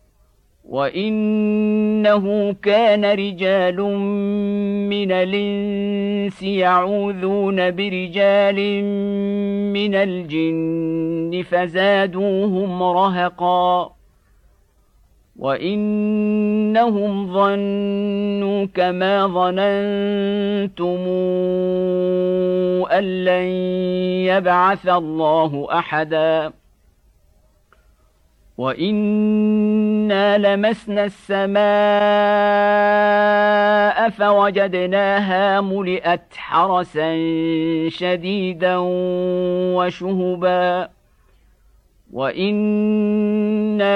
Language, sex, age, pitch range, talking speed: Indonesian, male, 50-69, 180-200 Hz, 40 wpm